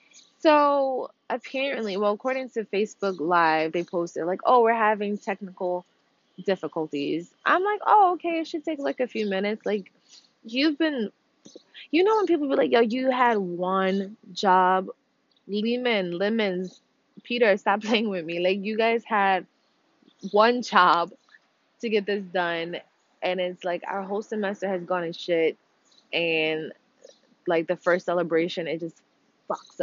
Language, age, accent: English, 20-39, American